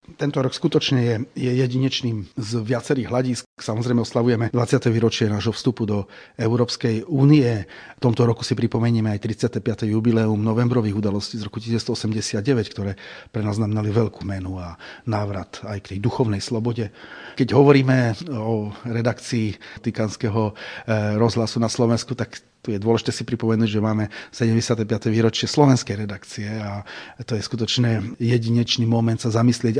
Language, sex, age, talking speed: Slovak, male, 40-59, 145 wpm